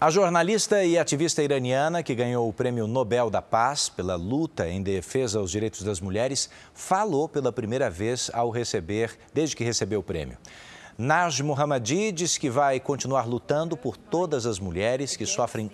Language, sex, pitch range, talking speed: Portuguese, male, 110-140 Hz, 170 wpm